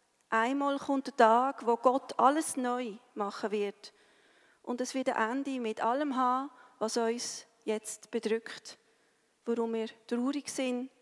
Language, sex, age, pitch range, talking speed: German, female, 40-59, 220-265 Hz, 140 wpm